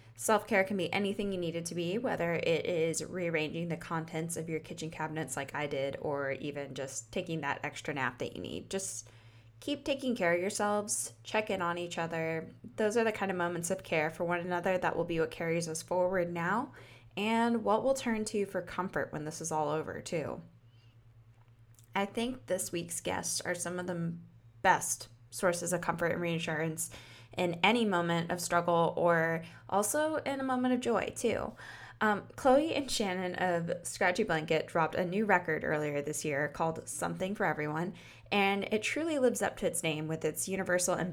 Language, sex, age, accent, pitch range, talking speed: English, female, 10-29, American, 155-200 Hz, 195 wpm